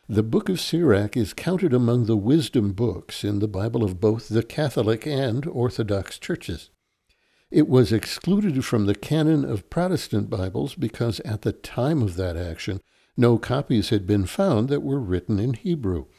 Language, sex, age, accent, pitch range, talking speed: English, male, 60-79, American, 100-130 Hz, 170 wpm